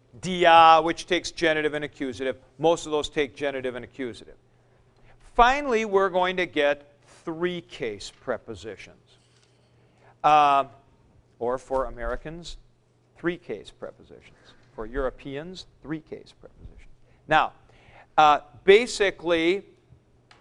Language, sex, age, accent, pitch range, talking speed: English, male, 50-69, American, 145-185 Hz, 105 wpm